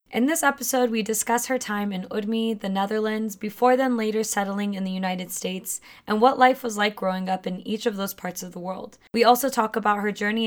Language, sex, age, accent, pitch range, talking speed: English, female, 10-29, American, 200-240 Hz, 230 wpm